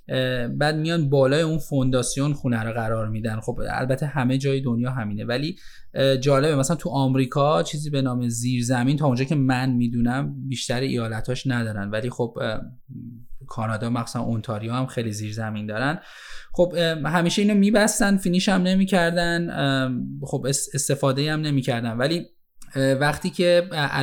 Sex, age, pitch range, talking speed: male, 10-29, 120-145 Hz, 140 wpm